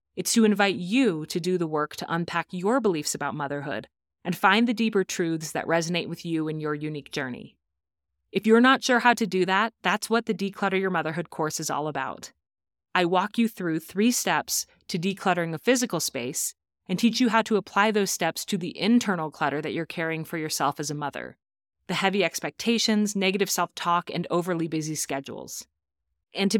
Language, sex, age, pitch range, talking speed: English, female, 30-49, 155-200 Hz, 195 wpm